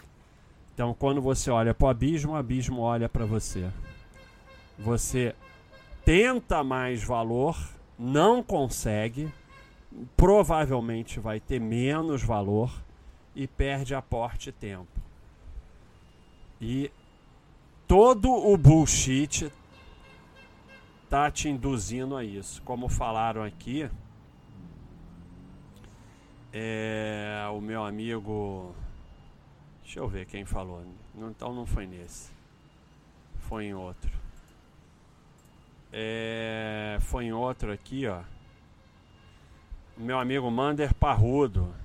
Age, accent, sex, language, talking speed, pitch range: 40-59, Brazilian, male, Portuguese, 95 wpm, 100-135 Hz